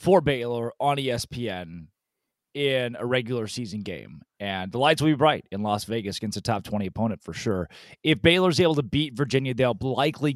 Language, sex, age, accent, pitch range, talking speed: English, male, 30-49, American, 125-185 Hz, 190 wpm